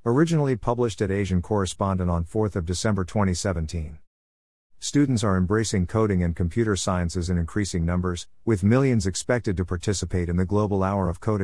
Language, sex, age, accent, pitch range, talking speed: English, male, 50-69, American, 90-110 Hz, 165 wpm